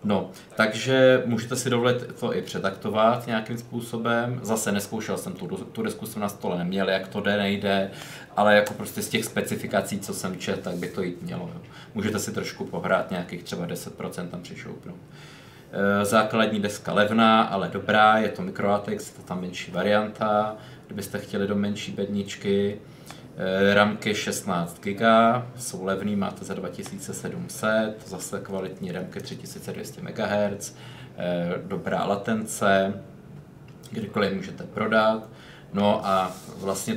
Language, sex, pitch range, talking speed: Czech, male, 100-110 Hz, 140 wpm